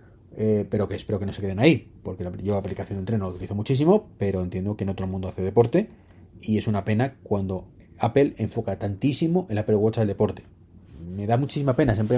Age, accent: 30-49, Spanish